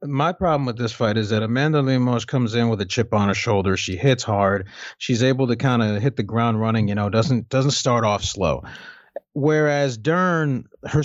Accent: American